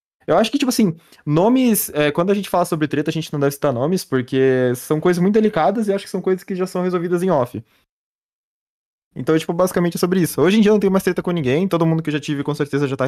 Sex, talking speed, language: male, 275 wpm, Portuguese